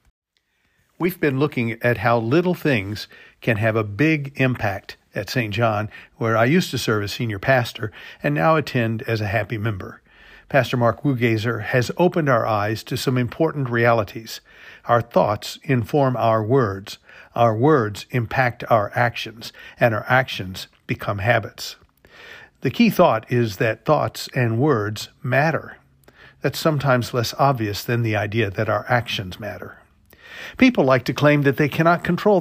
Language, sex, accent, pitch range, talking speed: English, male, American, 115-145 Hz, 155 wpm